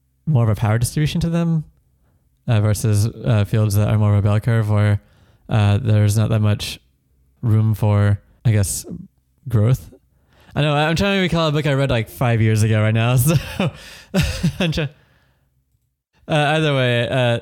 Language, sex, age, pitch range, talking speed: English, male, 20-39, 105-120 Hz, 170 wpm